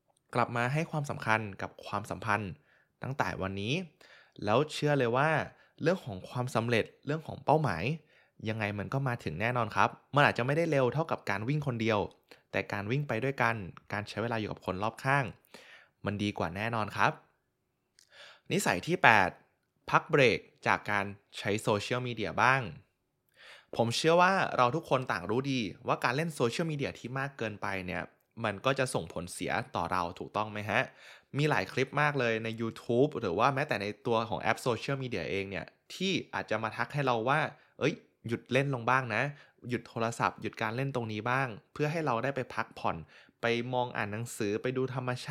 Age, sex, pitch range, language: 20-39, male, 110-140 Hz, Thai